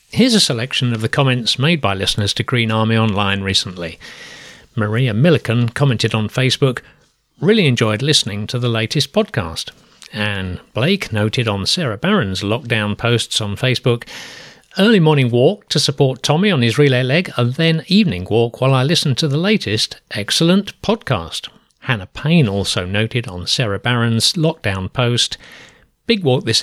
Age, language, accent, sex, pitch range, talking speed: 40-59, English, British, male, 105-145 Hz, 160 wpm